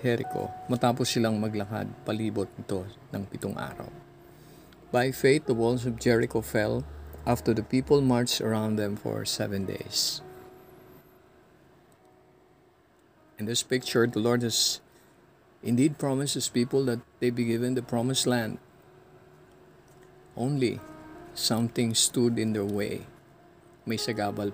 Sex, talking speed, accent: male, 120 wpm, native